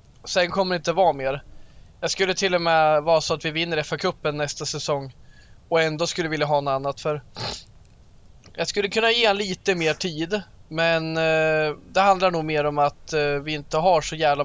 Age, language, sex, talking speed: 20-39, Swedish, male, 195 wpm